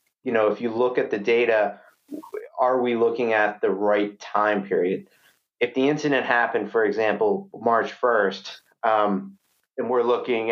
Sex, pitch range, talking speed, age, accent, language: male, 105-125 Hz, 160 wpm, 30-49, American, English